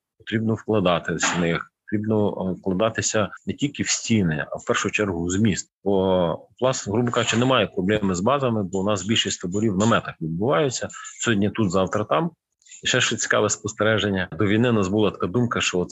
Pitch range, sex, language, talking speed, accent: 95-120 Hz, male, Ukrainian, 185 wpm, native